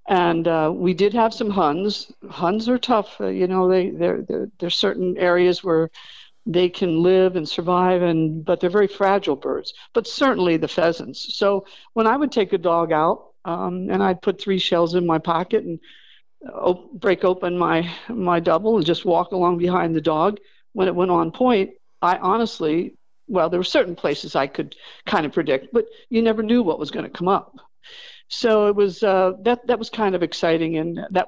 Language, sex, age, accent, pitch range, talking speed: English, female, 50-69, American, 170-210 Hz, 200 wpm